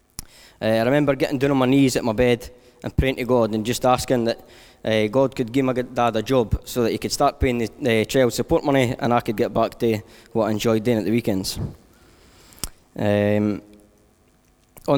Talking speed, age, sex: 210 wpm, 10-29, male